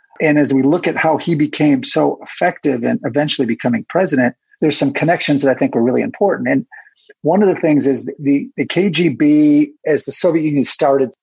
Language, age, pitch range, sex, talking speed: English, 50-69, 130-160 Hz, male, 205 wpm